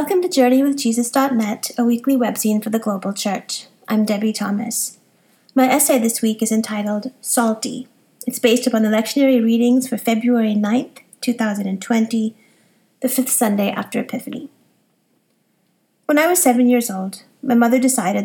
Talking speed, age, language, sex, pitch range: 145 wpm, 30-49, English, female, 210-245 Hz